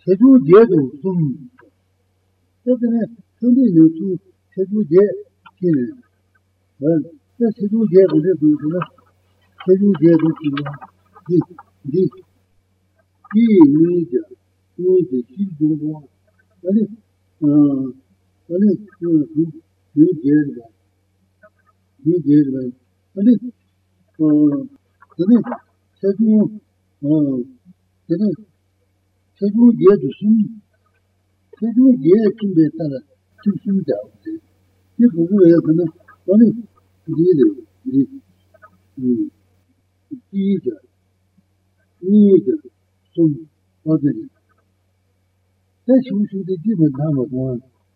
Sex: male